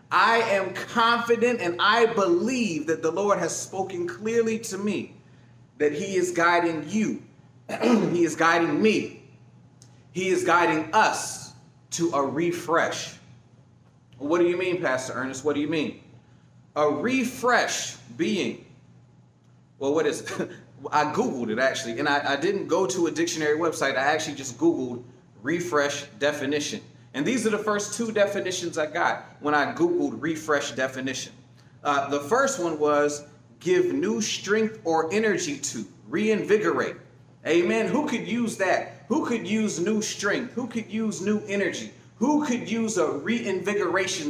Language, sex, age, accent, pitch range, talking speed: English, male, 30-49, American, 150-225 Hz, 150 wpm